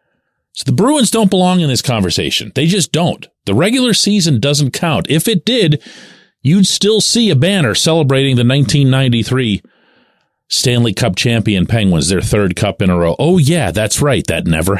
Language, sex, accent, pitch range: English, male, American, 100-150 Hz